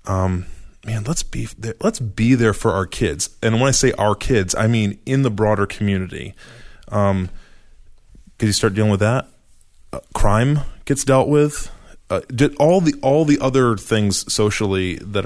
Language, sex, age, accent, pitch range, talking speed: English, male, 20-39, American, 95-115 Hz, 175 wpm